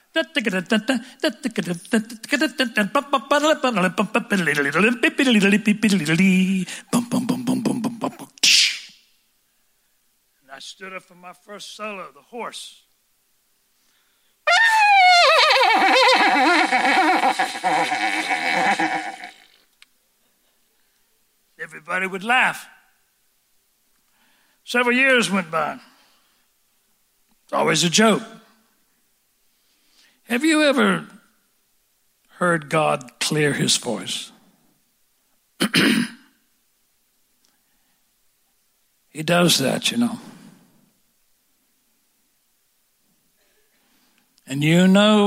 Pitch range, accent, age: 185-260 Hz, American, 60-79